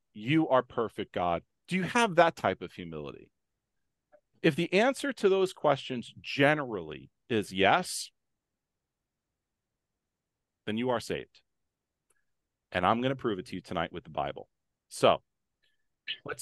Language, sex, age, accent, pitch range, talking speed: English, male, 40-59, American, 105-155 Hz, 140 wpm